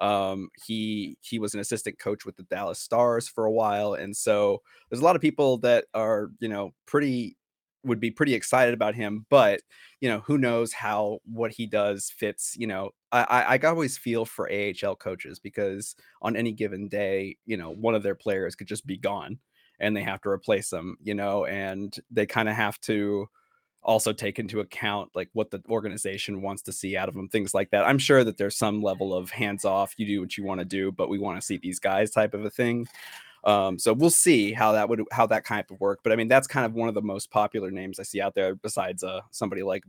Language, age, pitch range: English, 20-39, 100-115 Hz